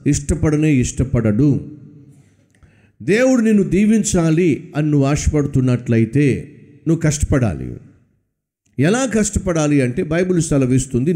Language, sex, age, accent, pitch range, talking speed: Telugu, male, 50-69, native, 140-190 Hz, 75 wpm